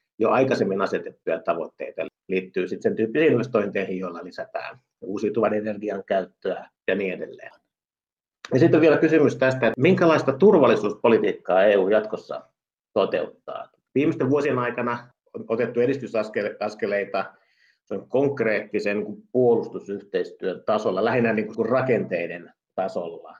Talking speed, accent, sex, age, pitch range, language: 105 wpm, native, male, 50-69, 105-140 Hz, Finnish